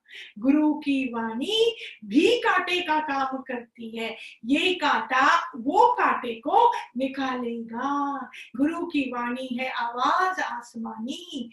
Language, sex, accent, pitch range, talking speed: Hindi, female, native, 255-305 Hz, 105 wpm